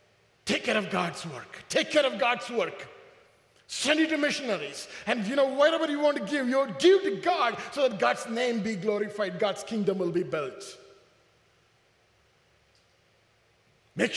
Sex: male